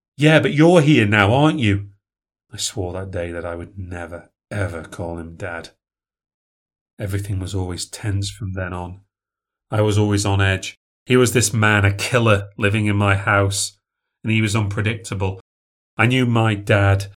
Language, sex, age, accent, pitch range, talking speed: English, male, 30-49, British, 100-110 Hz, 170 wpm